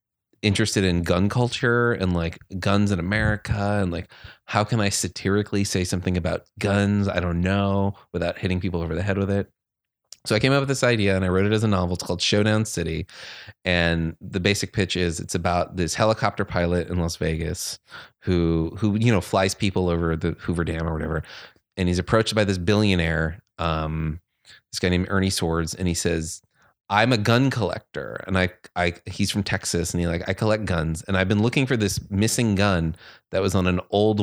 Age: 30-49